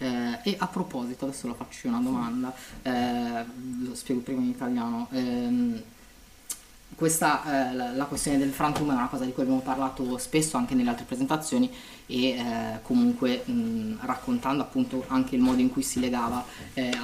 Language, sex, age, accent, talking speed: Italian, female, 20-39, native, 160 wpm